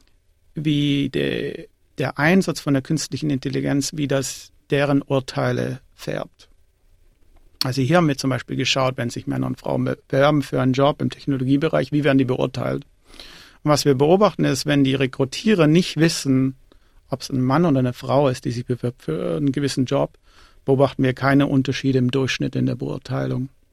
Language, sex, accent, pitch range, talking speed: German, male, German, 125-145 Hz, 170 wpm